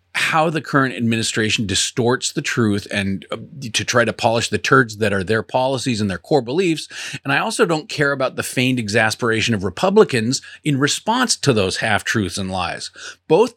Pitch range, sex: 110-150 Hz, male